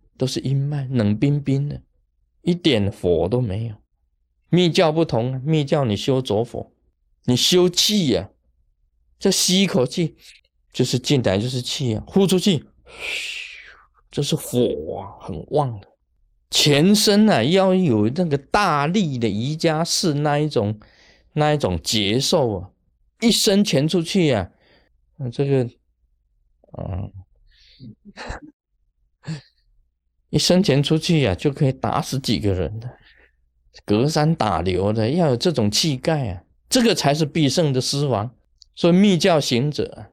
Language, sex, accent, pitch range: Chinese, male, native, 105-165 Hz